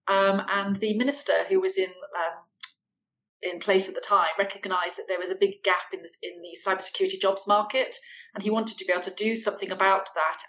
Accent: British